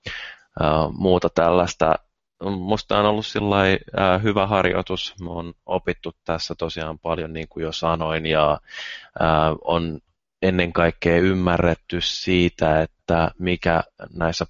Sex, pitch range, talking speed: male, 80-90 Hz, 105 wpm